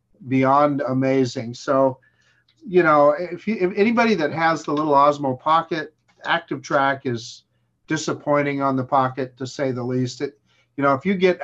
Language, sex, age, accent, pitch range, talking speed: English, male, 50-69, American, 130-150 Hz, 170 wpm